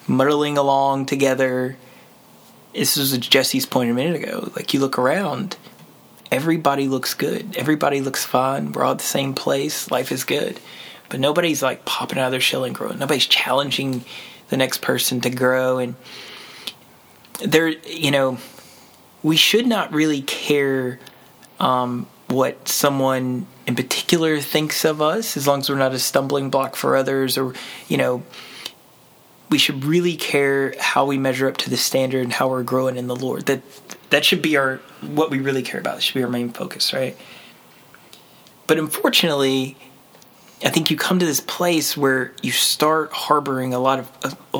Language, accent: English, American